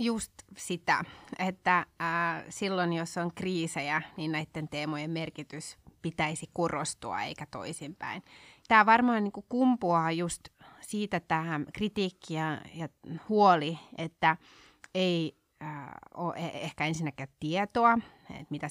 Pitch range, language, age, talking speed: 150-175 Hz, Finnish, 30-49, 100 wpm